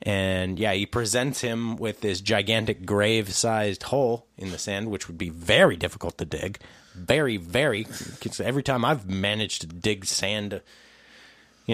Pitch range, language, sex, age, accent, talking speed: 100-140 Hz, English, male, 30-49, American, 155 wpm